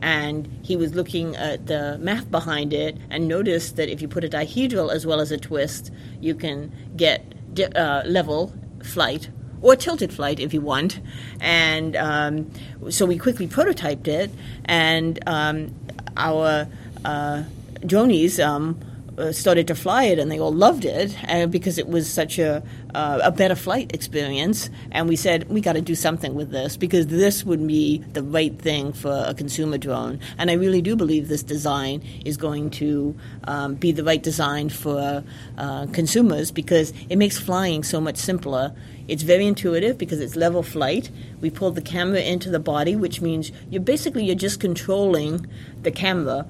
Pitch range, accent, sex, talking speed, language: 145-175 Hz, American, female, 175 wpm, English